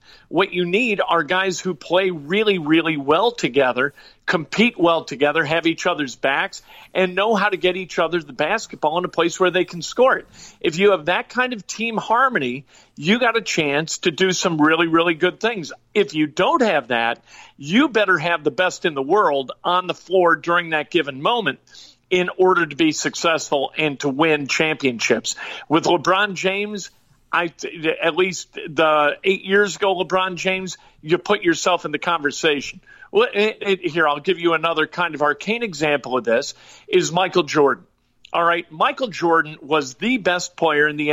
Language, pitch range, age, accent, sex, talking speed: English, 155-190 Hz, 50-69, American, male, 185 wpm